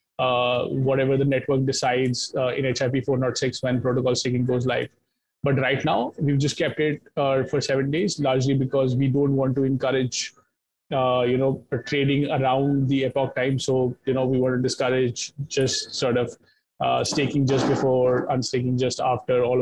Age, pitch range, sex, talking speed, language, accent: 20-39, 125-140 Hz, male, 175 wpm, English, Indian